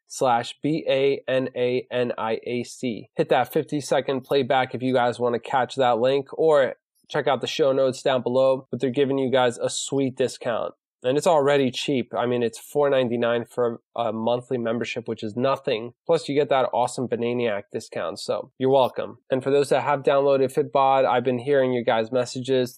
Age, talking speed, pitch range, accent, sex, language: 20-39, 180 wpm, 125-140 Hz, American, male, English